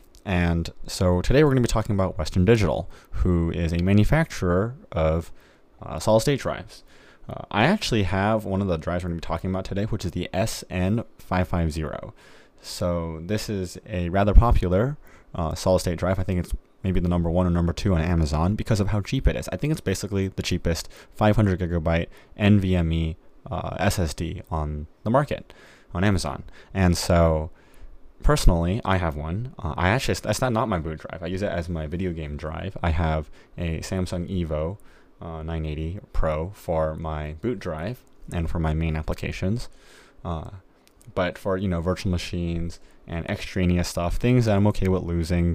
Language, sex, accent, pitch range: English, male, American, 80-95 Hz